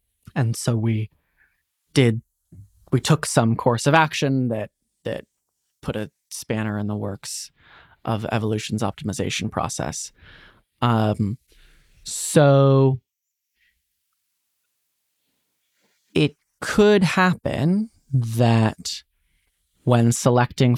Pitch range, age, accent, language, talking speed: 105-125 Hz, 20-39, American, English, 85 wpm